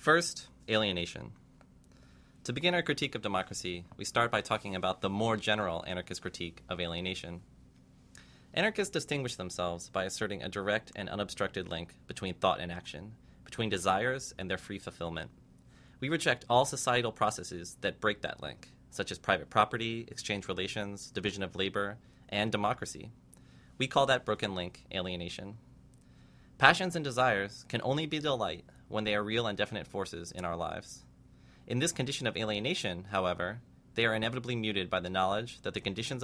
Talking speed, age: 165 wpm, 30-49